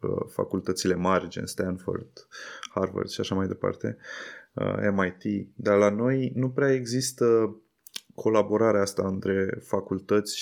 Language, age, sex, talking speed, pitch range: Romanian, 20-39, male, 115 wpm, 100-115 Hz